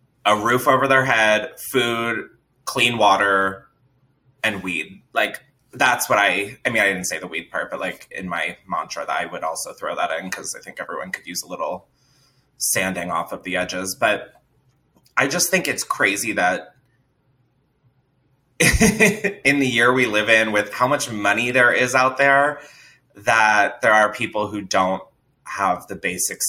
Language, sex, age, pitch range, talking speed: English, male, 20-39, 100-135 Hz, 175 wpm